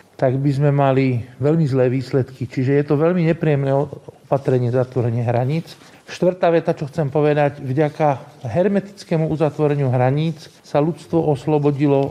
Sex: male